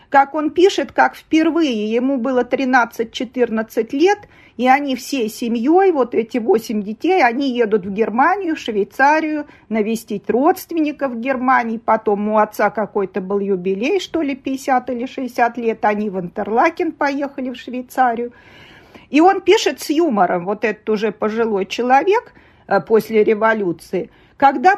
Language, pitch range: Russian, 210-285 Hz